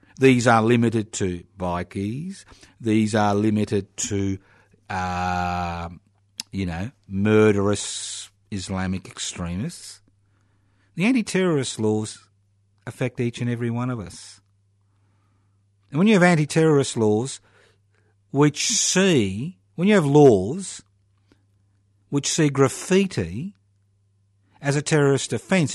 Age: 50-69